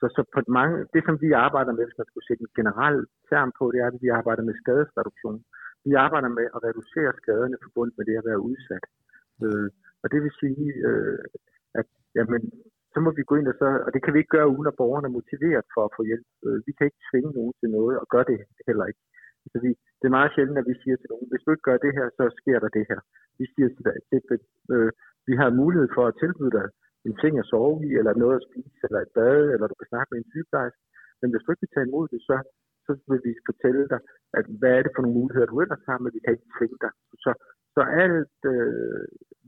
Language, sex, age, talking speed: Danish, male, 50-69, 255 wpm